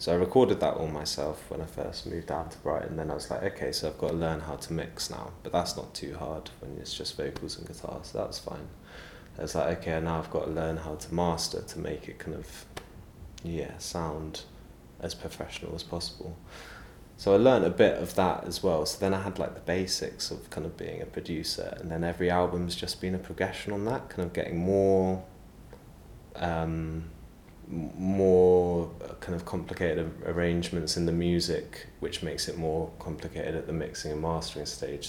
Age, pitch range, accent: 20-39, 80-95 Hz, British